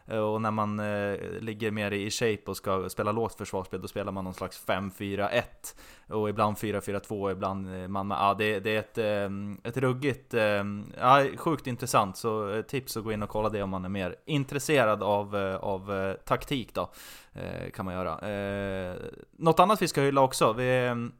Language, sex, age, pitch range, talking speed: Swedish, male, 20-39, 100-120 Hz, 195 wpm